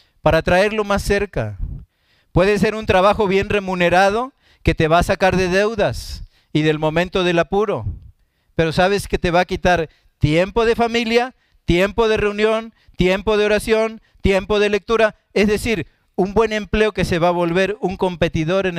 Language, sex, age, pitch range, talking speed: Spanish, male, 50-69, 145-190 Hz, 170 wpm